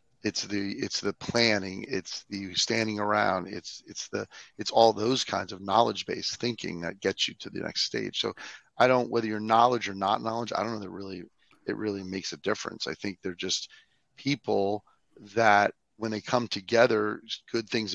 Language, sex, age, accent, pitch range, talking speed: English, male, 40-59, American, 100-115 Hz, 195 wpm